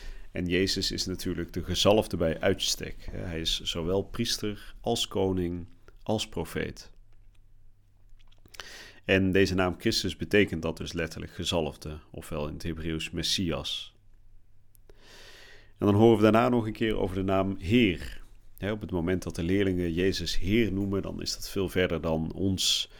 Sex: male